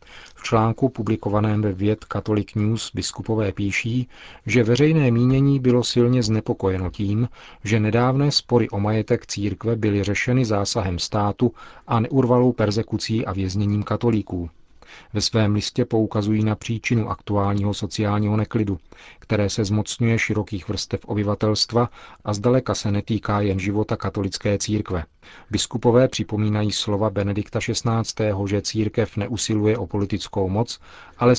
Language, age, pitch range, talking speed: Czech, 40-59, 100-120 Hz, 130 wpm